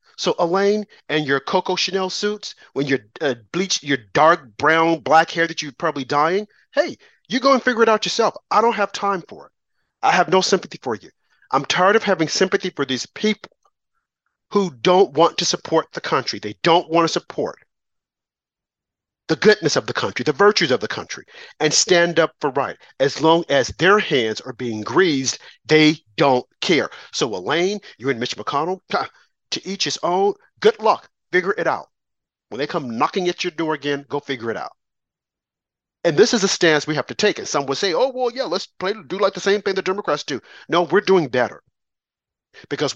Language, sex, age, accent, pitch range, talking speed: English, male, 40-59, American, 145-200 Hz, 200 wpm